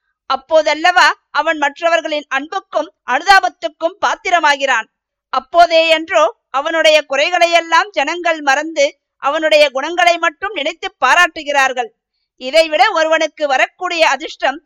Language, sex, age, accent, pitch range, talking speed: Tamil, female, 50-69, native, 290-345 Hz, 85 wpm